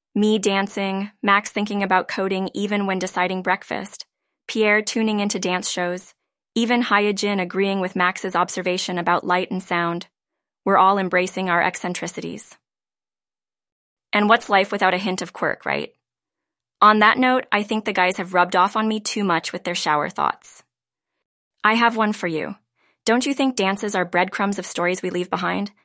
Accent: American